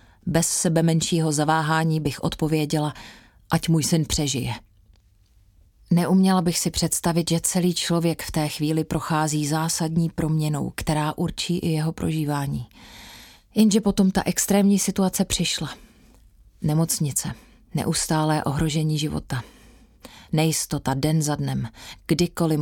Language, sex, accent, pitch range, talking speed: Czech, female, native, 150-170 Hz, 115 wpm